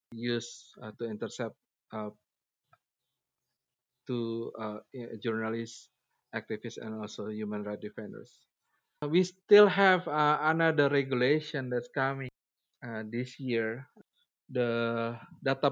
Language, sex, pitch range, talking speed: English, male, 115-140 Hz, 105 wpm